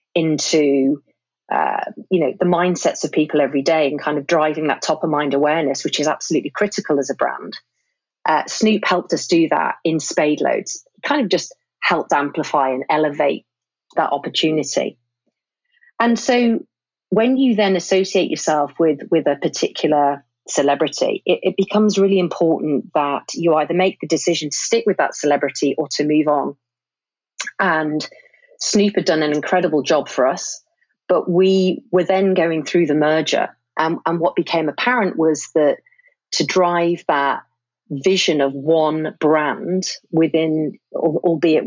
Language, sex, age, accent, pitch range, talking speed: English, female, 40-59, British, 150-185 Hz, 155 wpm